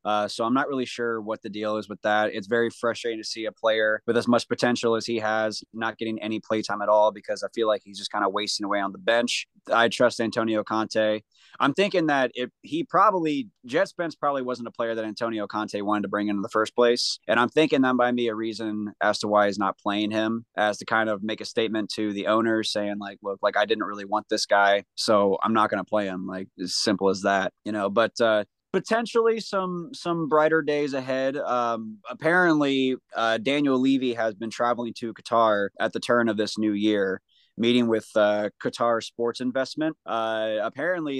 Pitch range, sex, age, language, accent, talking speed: 105-130 Hz, male, 20-39, English, American, 225 wpm